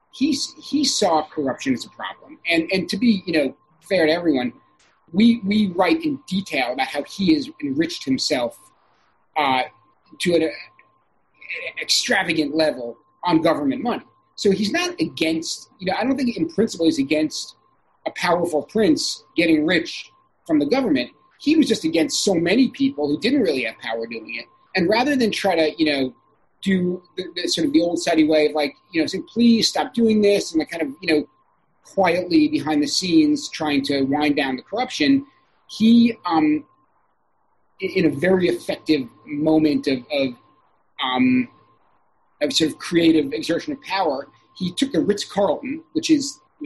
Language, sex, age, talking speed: English, male, 40-59, 175 wpm